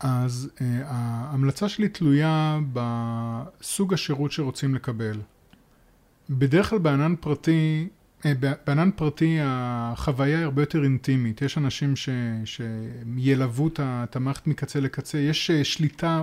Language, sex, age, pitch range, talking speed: Hebrew, male, 30-49, 130-160 Hz, 105 wpm